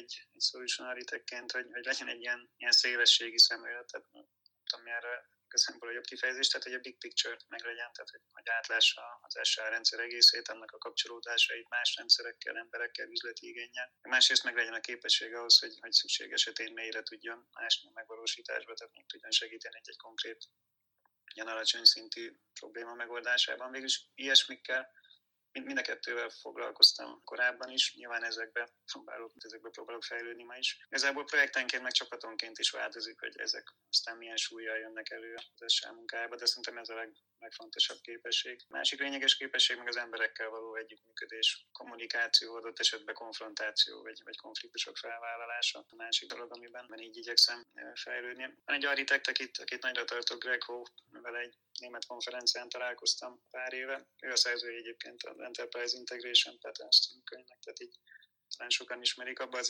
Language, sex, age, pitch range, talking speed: Hungarian, male, 20-39, 115-135 Hz, 160 wpm